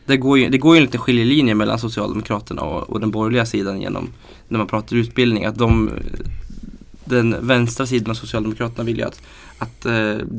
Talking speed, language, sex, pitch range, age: 190 wpm, Swedish, male, 110-120 Hz, 20-39